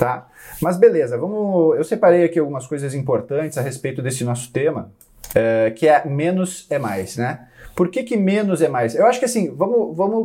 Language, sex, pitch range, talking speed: Portuguese, male, 140-190 Hz, 180 wpm